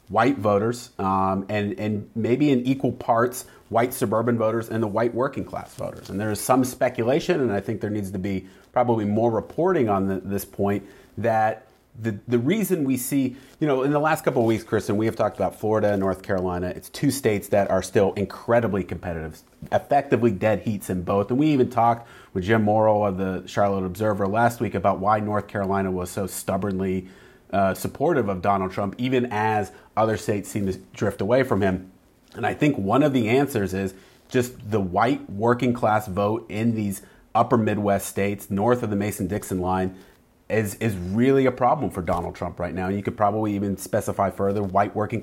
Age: 30-49